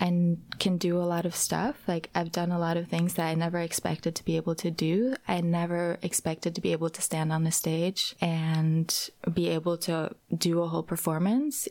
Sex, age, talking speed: female, 20-39, 215 wpm